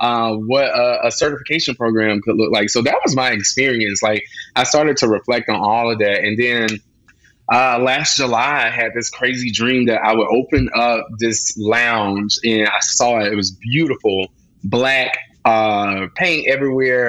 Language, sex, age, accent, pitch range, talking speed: English, male, 20-39, American, 105-125 Hz, 180 wpm